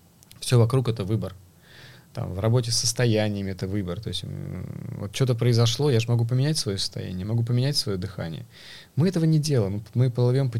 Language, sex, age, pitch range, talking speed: Russian, male, 20-39, 100-125 Hz, 185 wpm